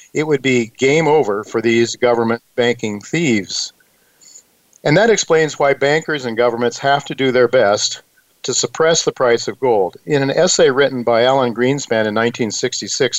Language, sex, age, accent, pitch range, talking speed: English, male, 50-69, American, 120-165 Hz, 170 wpm